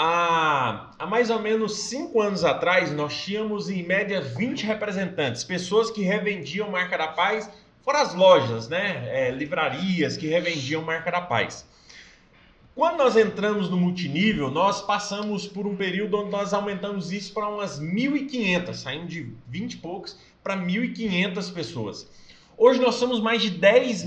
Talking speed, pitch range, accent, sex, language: 150 wpm, 175-225 Hz, Brazilian, male, Portuguese